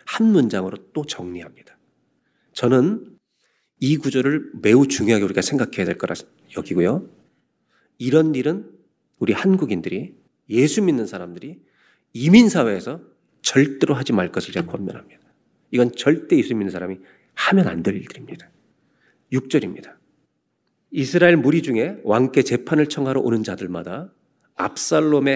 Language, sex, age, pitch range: Korean, male, 40-59, 105-155 Hz